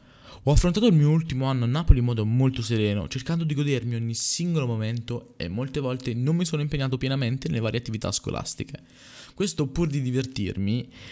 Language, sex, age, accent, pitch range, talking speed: Italian, male, 20-39, native, 115-150 Hz, 185 wpm